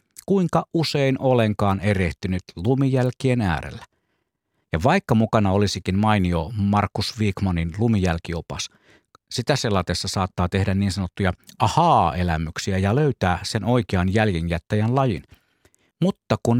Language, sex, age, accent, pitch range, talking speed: Finnish, male, 50-69, native, 95-130 Hz, 105 wpm